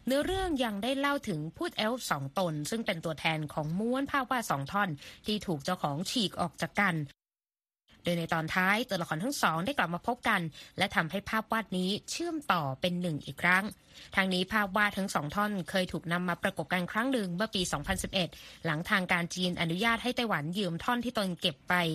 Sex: female